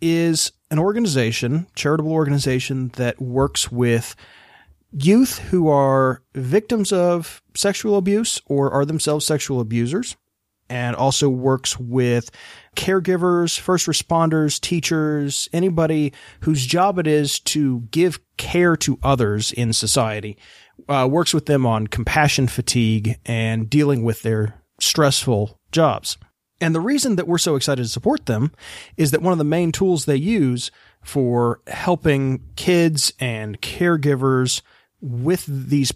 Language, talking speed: English, 130 wpm